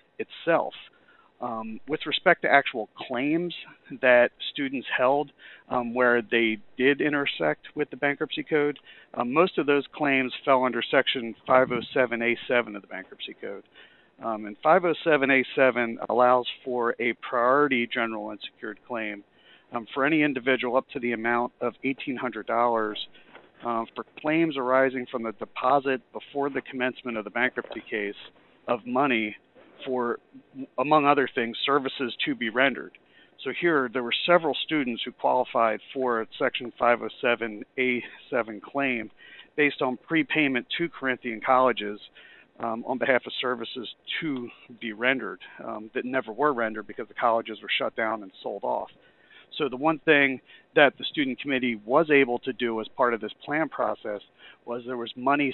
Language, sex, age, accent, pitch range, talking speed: English, male, 50-69, American, 115-140 Hz, 150 wpm